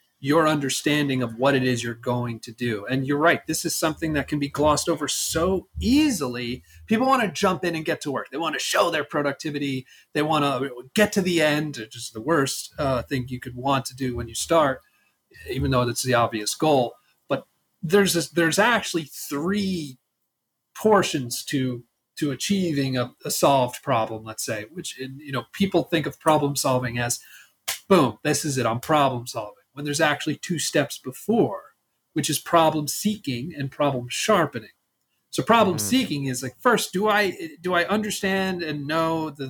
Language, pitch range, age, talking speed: English, 130-165 Hz, 30-49, 190 wpm